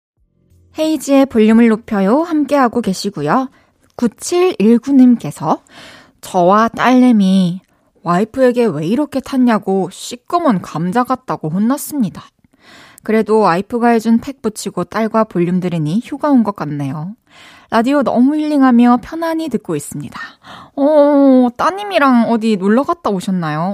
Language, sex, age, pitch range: Korean, female, 20-39, 185-255 Hz